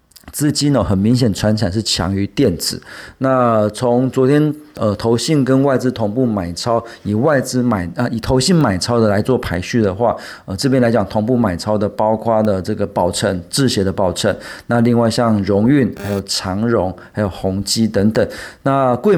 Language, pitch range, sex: Chinese, 100-130 Hz, male